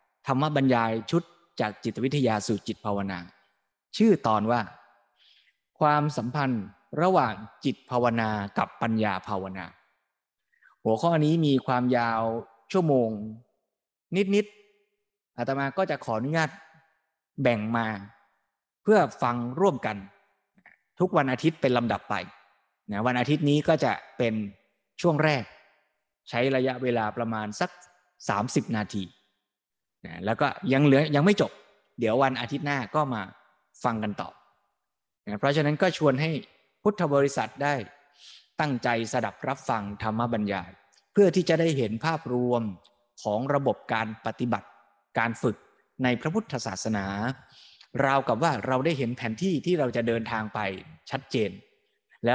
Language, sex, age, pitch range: Thai, male, 20-39, 110-155 Hz